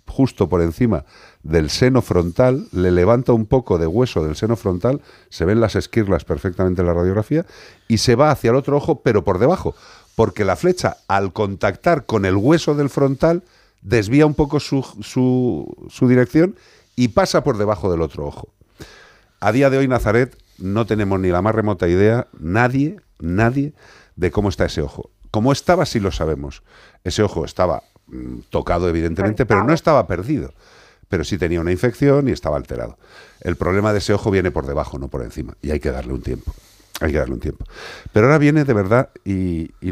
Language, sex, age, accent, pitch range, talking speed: Spanish, male, 50-69, Spanish, 85-125 Hz, 190 wpm